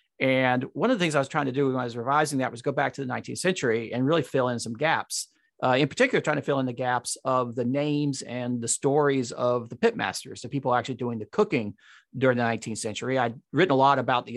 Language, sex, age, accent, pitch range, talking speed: English, male, 40-59, American, 120-145 Hz, 260 wpm